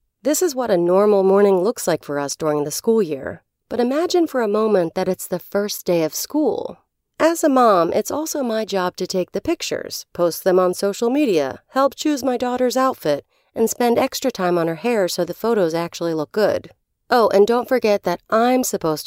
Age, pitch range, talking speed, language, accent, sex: 40-59, 185-270 Hz, 210 wpm, English, American, female